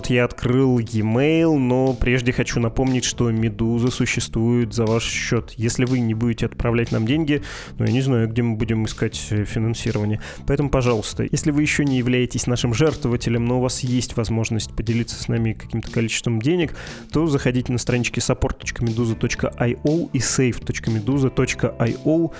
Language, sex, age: Russian, male, 20-39